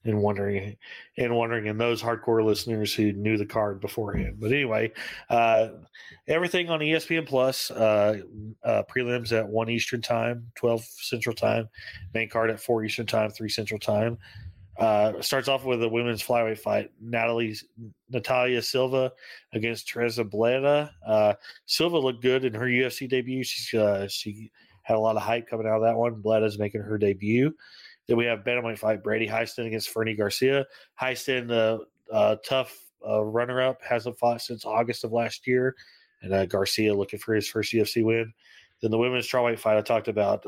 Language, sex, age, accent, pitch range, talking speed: English, male, 30-49, American, 110-125 Hz, 180 wpm